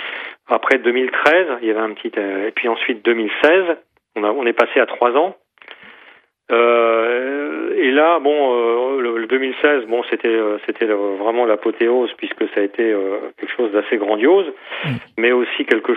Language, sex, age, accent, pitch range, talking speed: French, male, 40-59, French, 115-145 Hz, 170 wpm